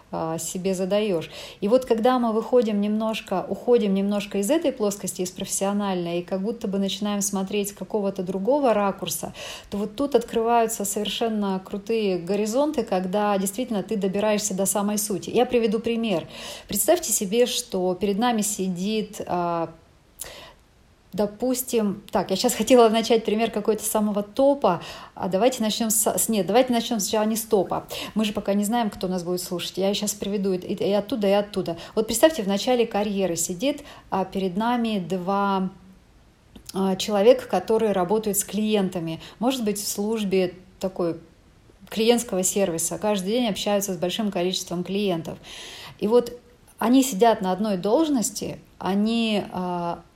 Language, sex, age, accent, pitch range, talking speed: Russian, female, 40-59, native, 190-225 Hz, 145 wpm